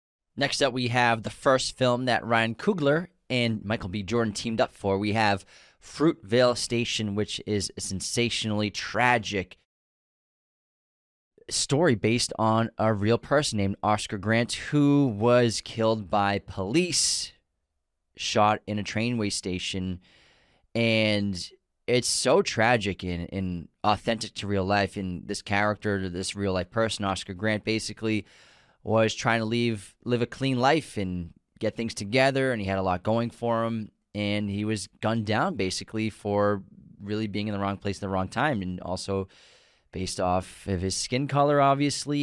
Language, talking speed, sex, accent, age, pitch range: English, 155 wpm, male, American, 20-39, 95-120 Hz